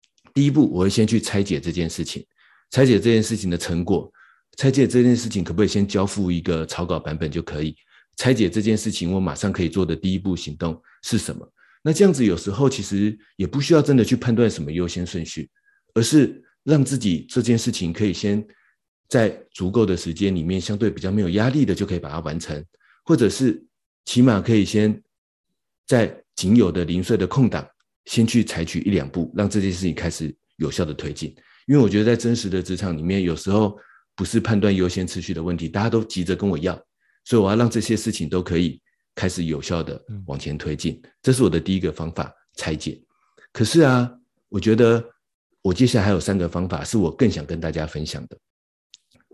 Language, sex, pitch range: Chinese, male, 85-115 Hz